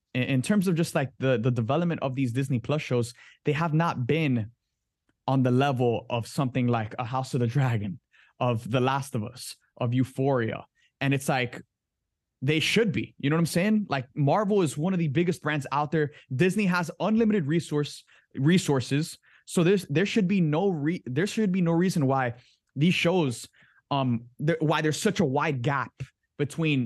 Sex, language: male, English